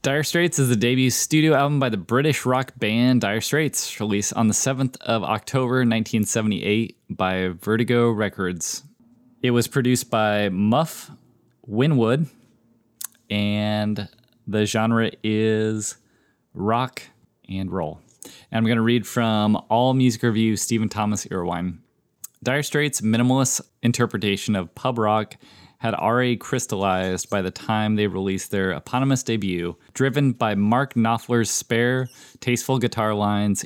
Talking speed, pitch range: 135 wpm, 105-125 Hz